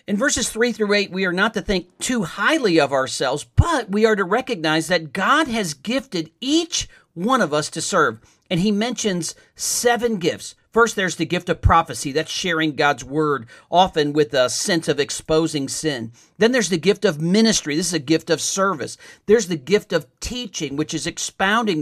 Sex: male